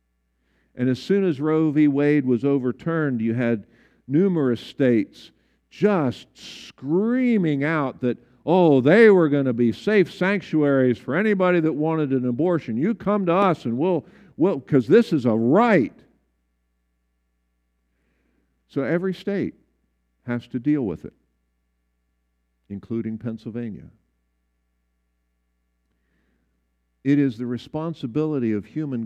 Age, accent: 50-69, American